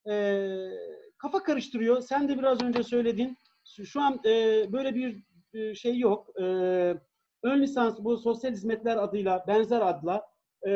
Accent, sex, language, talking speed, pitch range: native, male, Turkish, 125 wpm, 175-235 Hz